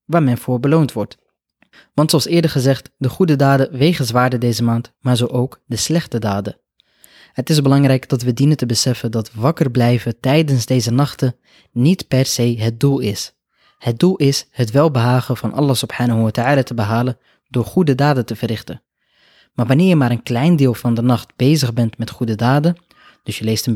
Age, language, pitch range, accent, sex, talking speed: 20-39, Dutch, 120-140 Hz, Dutch, male, 190 wpm